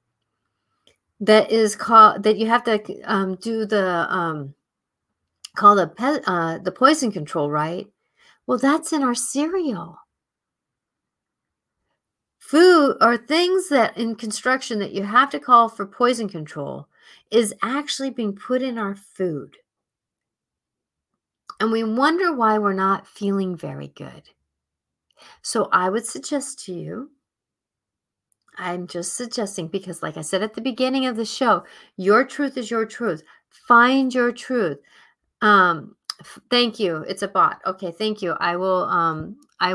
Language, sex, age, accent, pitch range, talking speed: English, female, 50-69, American, 175-245 Hz, 145 wpm